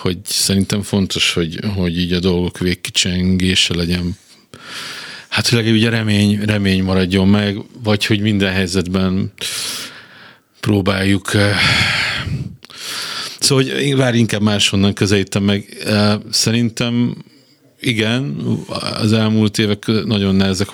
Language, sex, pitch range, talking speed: Hungarian, male, 95-110 Hz, 110 wpm